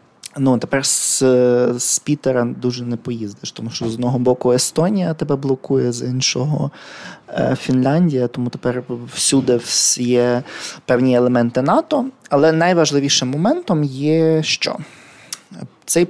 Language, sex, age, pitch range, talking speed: Ukrainian, male, 20-39, 120-145 Hz, 125 wpm